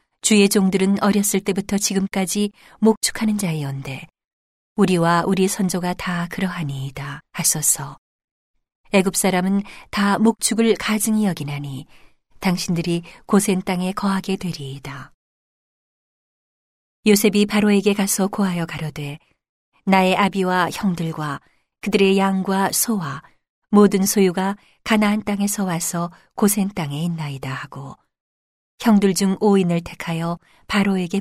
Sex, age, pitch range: female, 40-59, 160-205 Hz